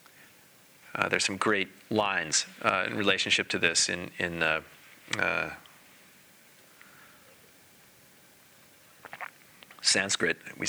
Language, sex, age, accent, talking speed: English, male, 40-59, American, 90 wpm